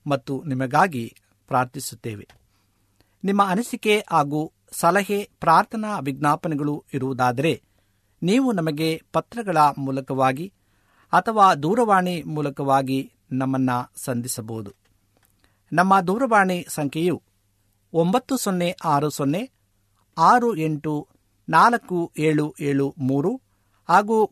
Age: 50-69